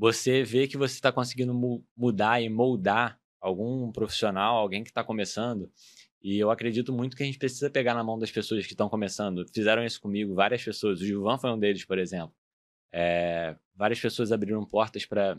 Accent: Brazilian